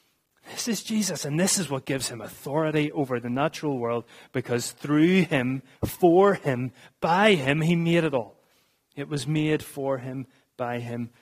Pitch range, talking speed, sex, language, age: 120-155 Hz, 170 wpm, male, English, 30-49